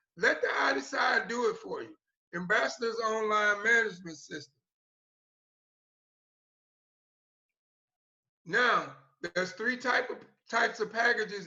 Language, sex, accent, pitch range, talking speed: English, male, American, 195-235 Hz, 105 wpm